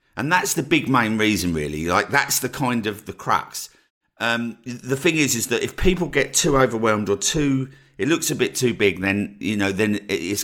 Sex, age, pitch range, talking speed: male, 50-69, 95-125 Hz, 220 wpm